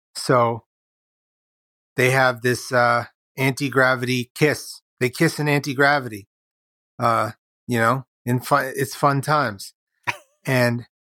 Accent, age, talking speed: American, 30-49, 110 wpm